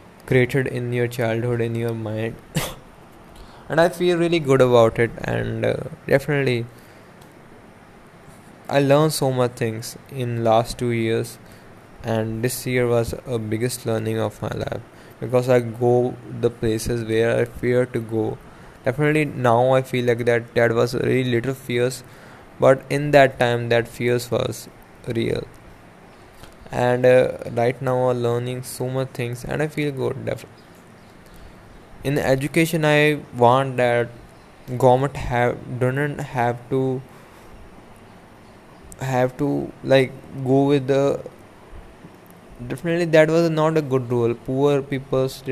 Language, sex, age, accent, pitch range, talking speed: English, male, 10-29, Indian, 120-135 Hz, 140 wpm